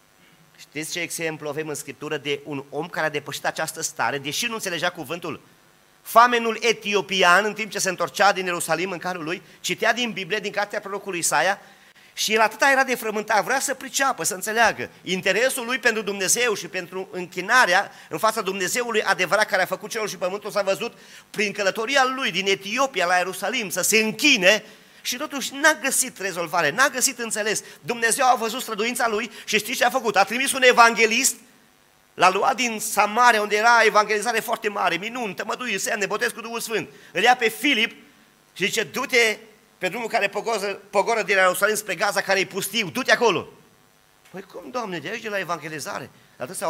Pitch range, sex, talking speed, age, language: 180-230 Hz, male, 185 wpm, 30-49, Romanian